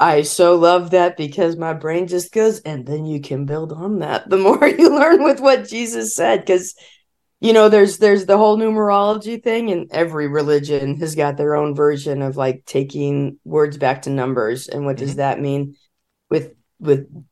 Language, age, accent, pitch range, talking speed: English, 20-39, American, 150-180 Hz, 190 wpm